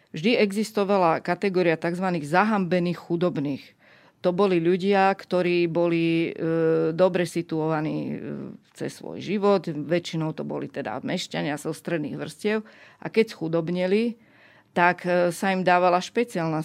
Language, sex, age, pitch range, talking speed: Slovak, female, 40-59, 160-185 Hz, 115 wpm